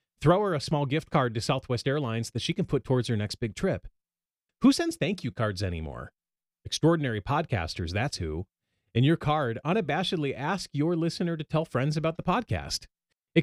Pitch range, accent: 110-155 Hz, American